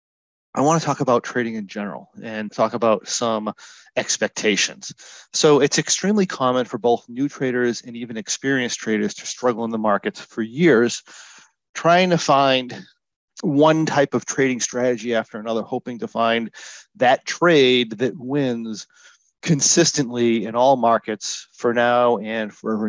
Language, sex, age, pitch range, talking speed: English, male, 40-59, 115-140 Hz, 145 wpm